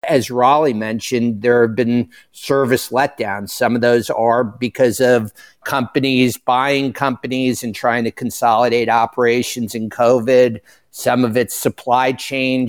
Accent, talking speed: American, 135 wpm